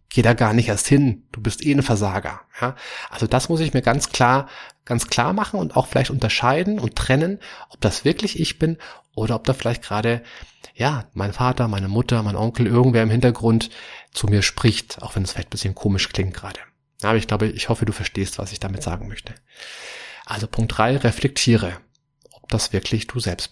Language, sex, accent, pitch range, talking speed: German, male, German, 105-135 Hz, 205 wpm